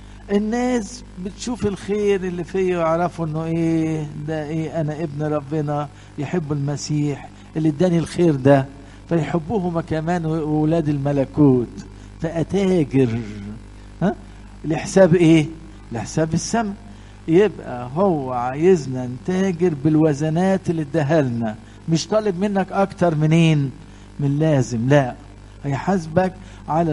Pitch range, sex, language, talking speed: 130-180 Hz, male, English, 105 wpm